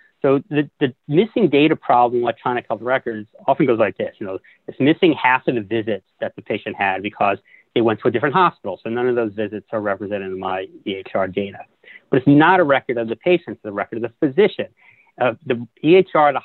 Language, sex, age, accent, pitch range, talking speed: English, male, 40-59, American, 115-160 Hz, 230 wpm